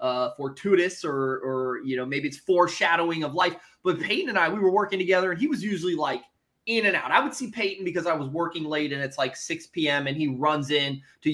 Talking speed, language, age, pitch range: 245 wpm, English, 20-39, 135-205 Hz